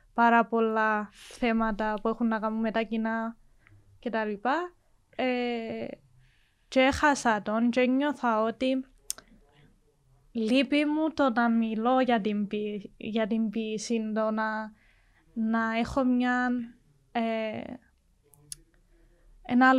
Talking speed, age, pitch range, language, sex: 95 wpm, 20-39, 220-255 Hz, Greek, female